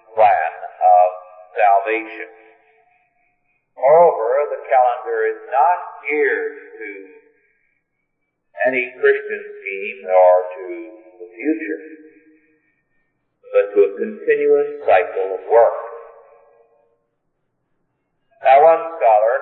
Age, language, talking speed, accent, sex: 50-69, English, 85 wpm, American, male